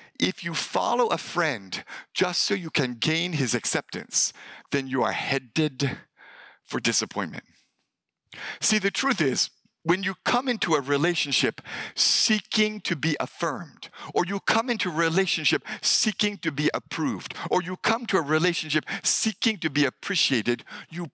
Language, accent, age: English, American, 60-79